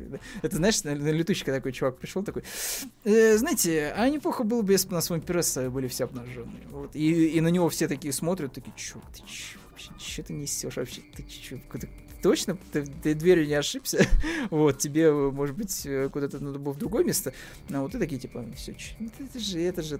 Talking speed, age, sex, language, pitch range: 210 wpm, 20-39, male, Russian, 135-180 Hz